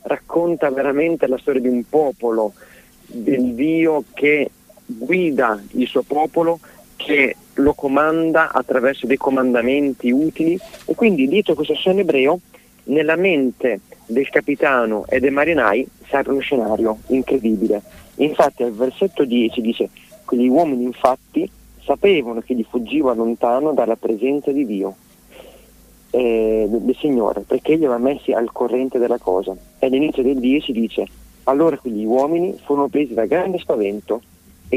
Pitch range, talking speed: 120-160 Hz, 140 wpm